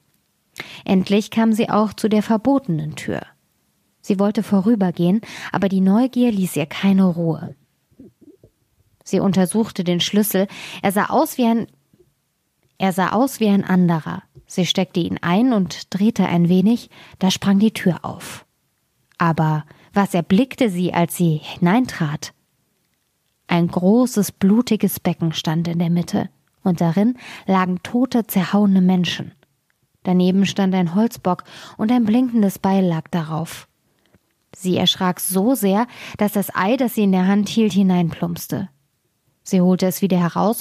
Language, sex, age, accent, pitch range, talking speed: German, female, 20-39, German, 175-210 Hz, 140 wpm